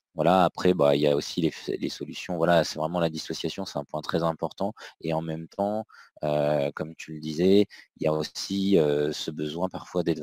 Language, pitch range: French, 75-90 Hz